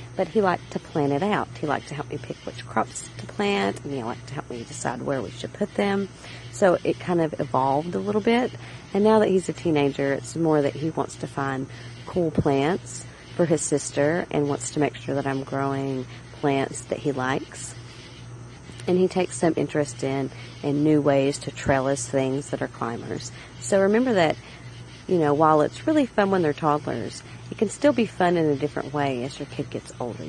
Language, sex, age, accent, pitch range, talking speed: English, female, 40-59, American, 125-165 Hz, 215 wpm